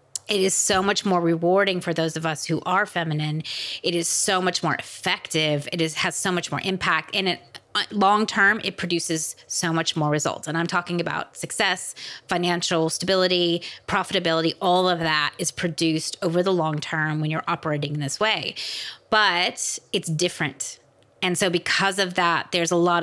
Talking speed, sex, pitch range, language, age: 180 wpm, female, 160-190 Hz, English, 30-49